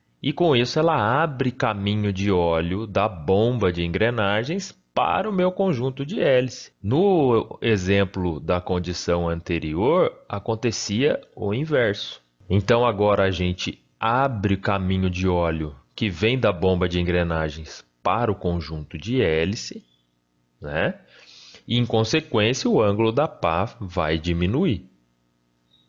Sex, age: male, 30-49